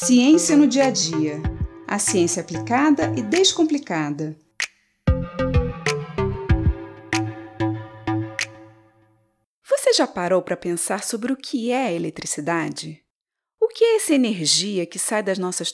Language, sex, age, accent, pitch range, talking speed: Portuguese, female, 40-59, Brazilian, 170-275 Hz, 115 wpm